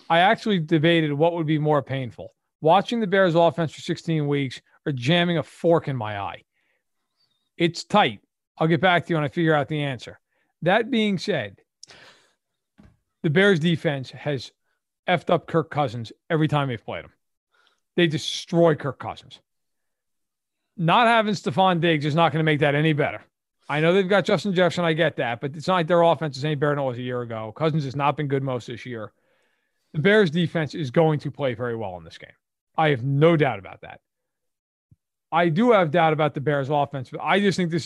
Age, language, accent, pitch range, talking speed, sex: 40-59, English, American, 145-180 Hz, 205 wpm, male